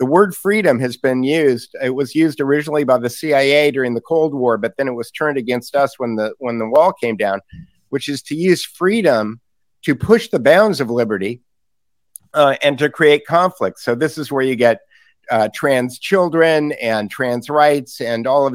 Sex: male